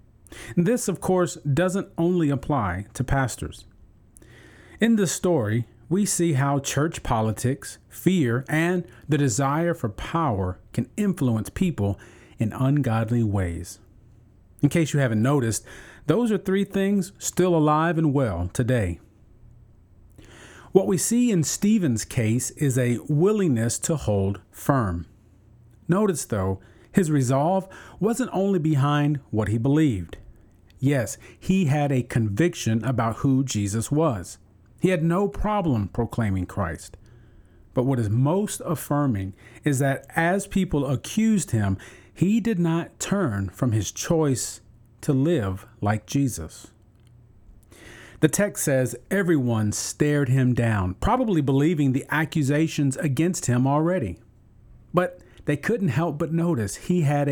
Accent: American